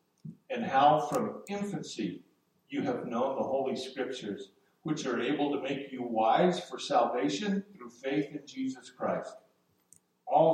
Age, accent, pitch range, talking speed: 50-69, American, 135-185 Hz, 140 wpm